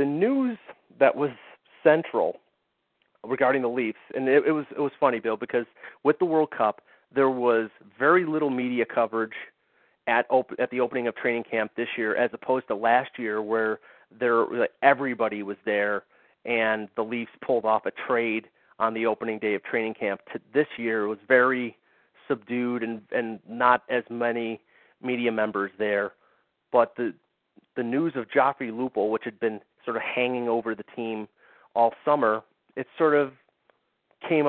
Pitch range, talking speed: 110-130 Hz, 170 wpm